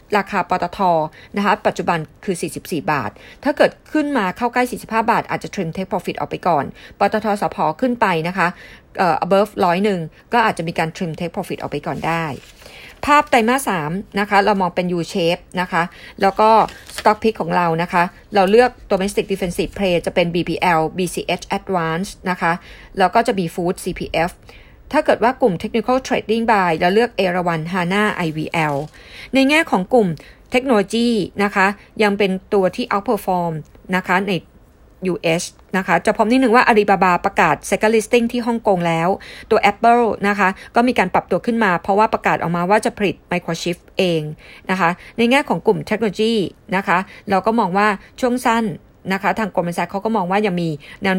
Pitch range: 175-220 Hz